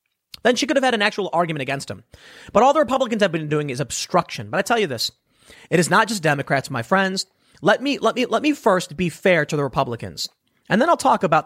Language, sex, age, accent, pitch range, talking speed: English, male, 30-49, American, 145-220 Hz, 250 wpm